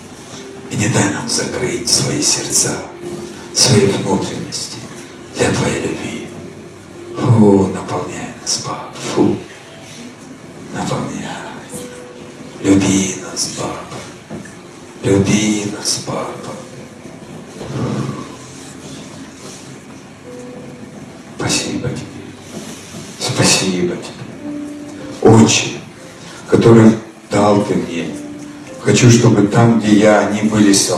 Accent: native